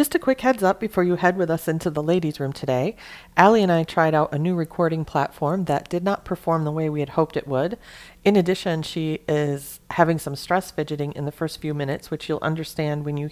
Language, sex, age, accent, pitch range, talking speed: English, female, 40-59, American, 150-175 Hz, 240 wpm